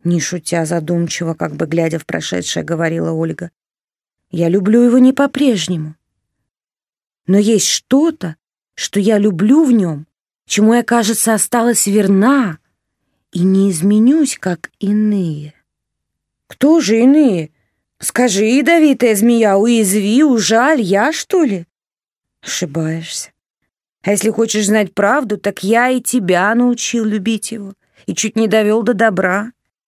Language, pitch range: Russian, 175-230 Hz